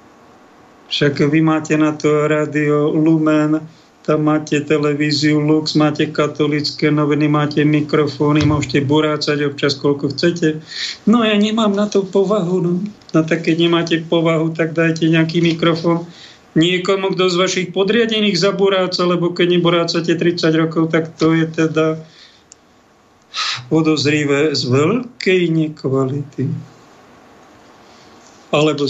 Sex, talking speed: male, 120 wpm